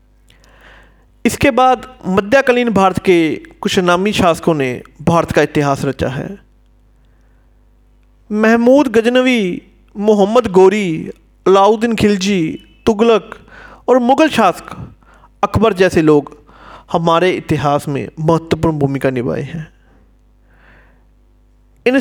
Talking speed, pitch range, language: 95 wpm, 145-220 Hz, Hindi